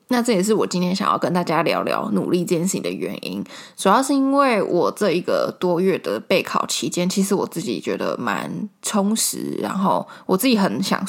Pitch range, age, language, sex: 180-225 Hz, 20-39, Chinese, female